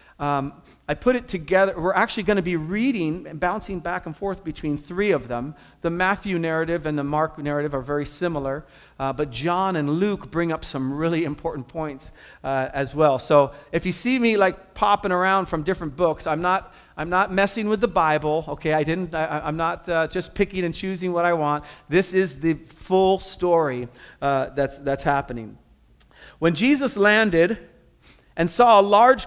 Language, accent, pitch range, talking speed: English, American, 150-195 Hz, 190 wpm